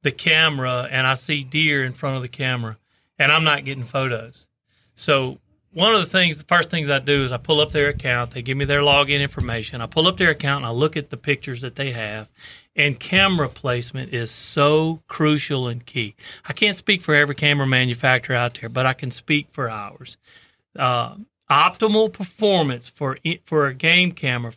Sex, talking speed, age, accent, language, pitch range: male, 205 wpm, 40-59, American, English, 125-160 Hz